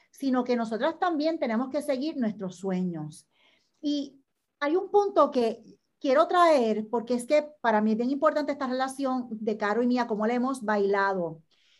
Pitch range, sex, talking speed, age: 180-275 Hz, female, 175 wpm, 40-59